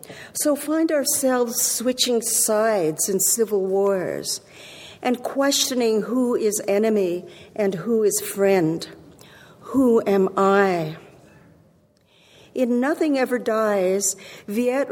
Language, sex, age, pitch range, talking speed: English, female, 50-69, 190-240 Hz, 100 wpm